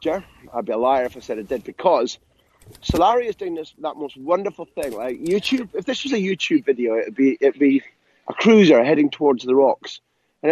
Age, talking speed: 30-49, 210 wpm